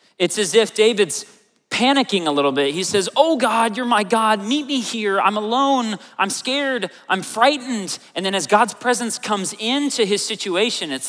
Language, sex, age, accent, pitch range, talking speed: English, male, 30-49, American, 160-220 Hz, 185 wpm